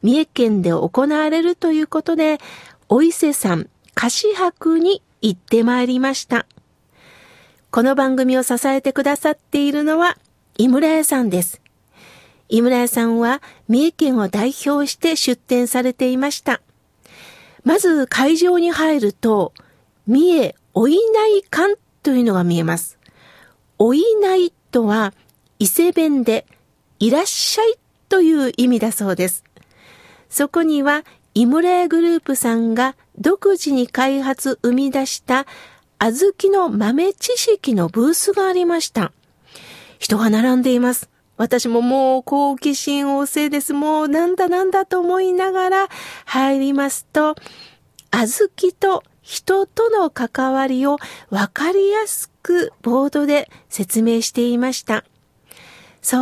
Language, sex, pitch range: Japanese, female, 245-340 Hz